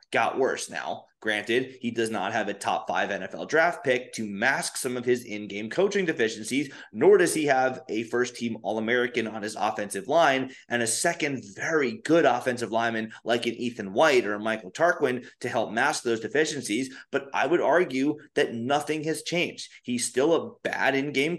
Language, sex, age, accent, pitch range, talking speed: English, male, 30-49, American, 115-155 Hz, 185 wpm